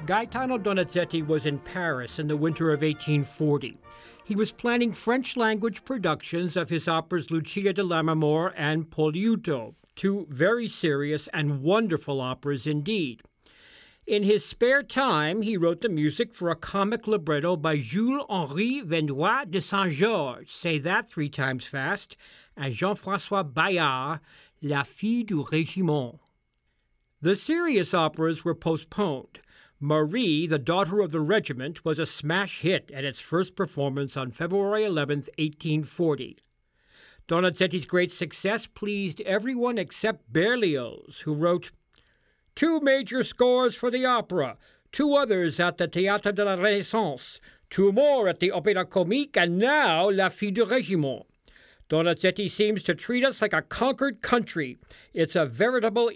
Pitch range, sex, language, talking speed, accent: 155-210 Hz, male, English, 140 wpm, American